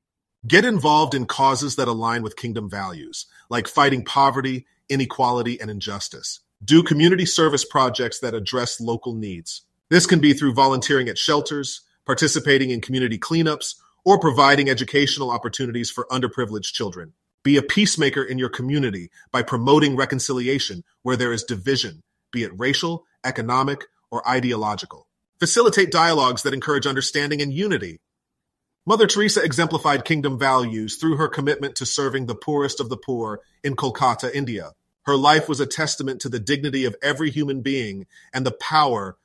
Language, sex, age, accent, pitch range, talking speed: English, male, 30-49, American, 120-145 Hz, 155 wpm